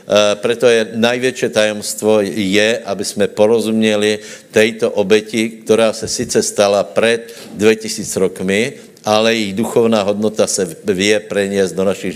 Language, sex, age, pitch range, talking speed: Slovak, male, 60-79, 95-110 Hz, 140 wpm